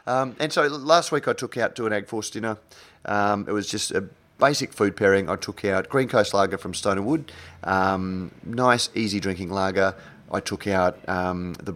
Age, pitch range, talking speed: 30-49, 95-115 Hz, 205 wpm